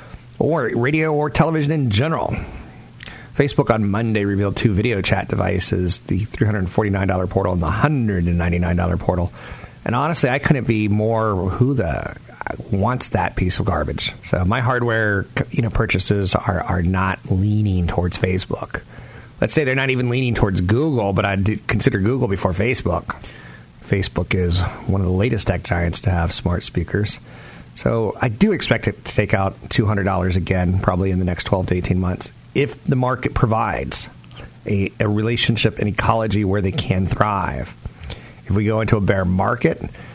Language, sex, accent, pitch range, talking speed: English, male, American, 95-115 Hz, 180 wpm